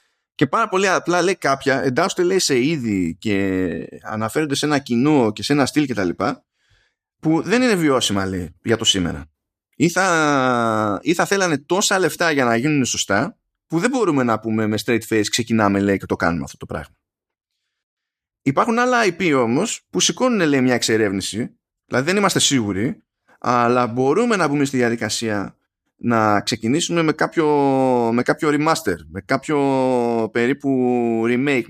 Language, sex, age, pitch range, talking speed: Greek, male, 20-39, 115-165 Hz, 165 wpm